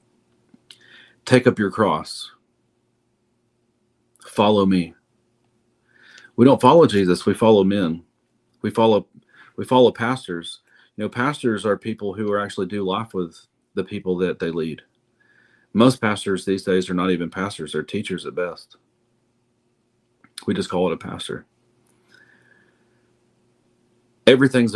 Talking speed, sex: 125 wpm, male